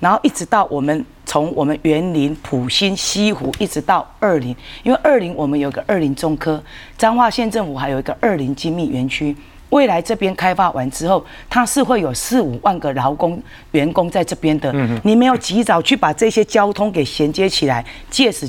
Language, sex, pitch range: Chinese, female, 145-205 Hz